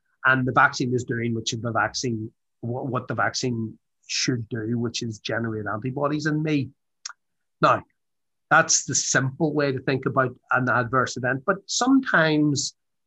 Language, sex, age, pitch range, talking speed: English, male, 30-49, 120-145 Hz, 145 wpm